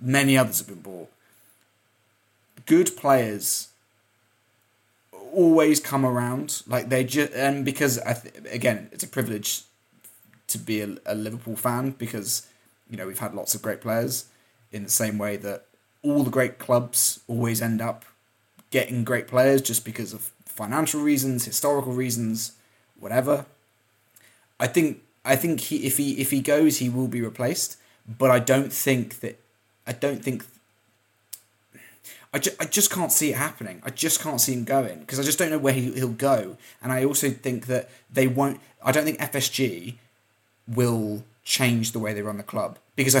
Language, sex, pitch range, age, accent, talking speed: English, male, 110-130 Hz, 20-39, British, 175 wpm